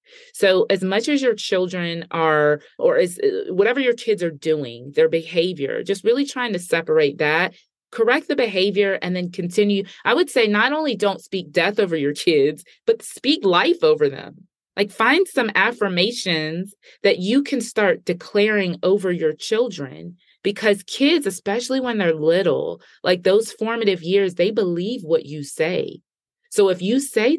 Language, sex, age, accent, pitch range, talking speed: English, female, 30-49, American, 165-230 Hz, 160 wpm